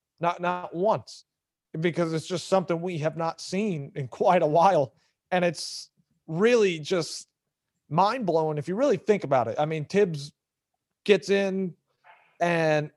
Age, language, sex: 30-49, English, male